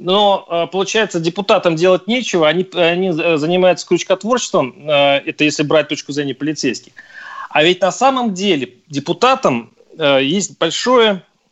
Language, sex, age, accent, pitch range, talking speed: Russian, male, 30-49, native, 150-200 Hz, 120 wpm